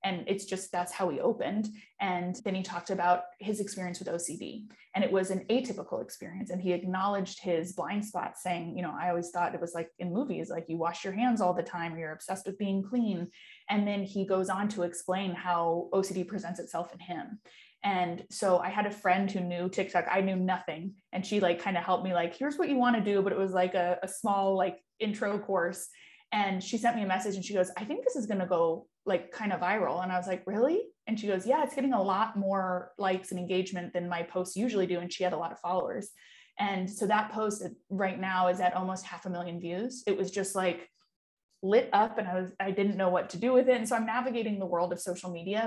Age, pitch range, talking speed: 20-39, 180-210 Hz, 250 wpm